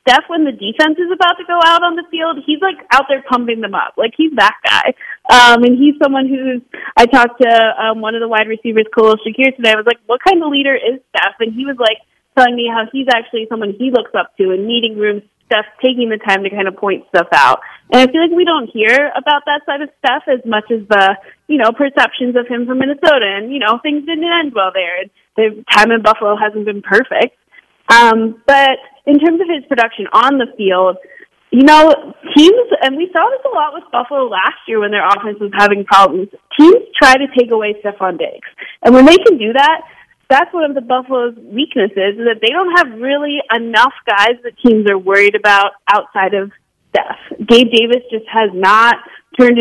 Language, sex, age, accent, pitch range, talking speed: English, female, 20-39, American, 215-280 Hz, 220 wpm